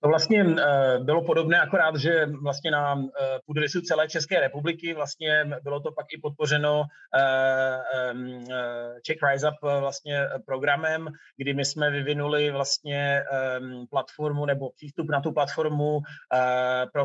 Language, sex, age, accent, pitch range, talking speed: Czech, male, 30-49, native, 135-150 Hz, 125 wpm